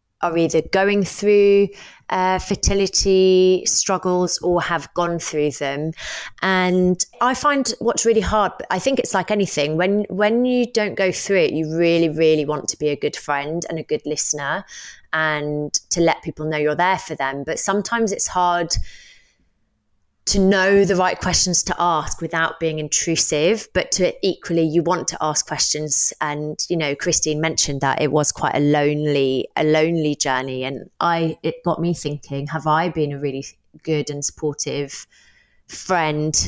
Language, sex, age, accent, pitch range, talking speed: English, female, 20-39, British, 150-185 Hz, 170 wpm